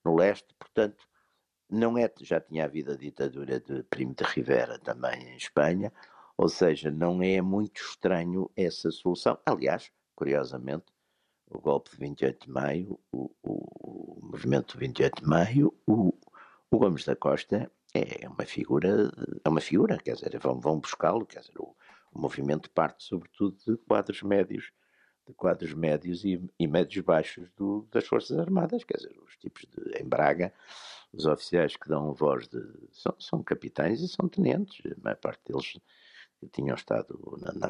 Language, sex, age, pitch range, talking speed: Portuguese, male, 60-79, 80-130 Hz, 170 wpm